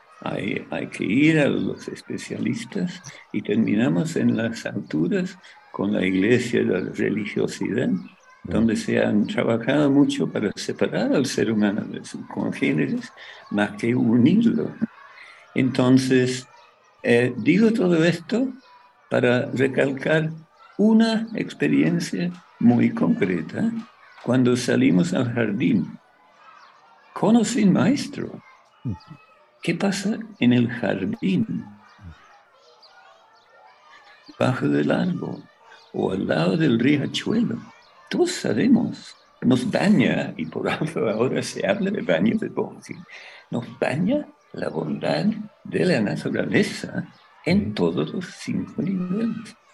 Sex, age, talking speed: male, 60-79, 110 wpm